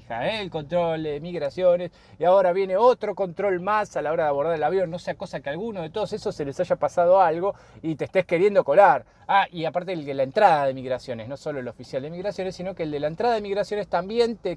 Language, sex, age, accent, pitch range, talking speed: Spanish, male, 20-39, Argentinian, 135-190 Hz, 255 wpm